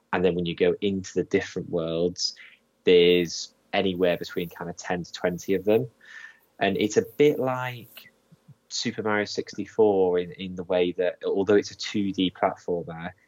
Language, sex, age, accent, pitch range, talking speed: English, male, 20-39, British, 85-100 Hz, 165 wpm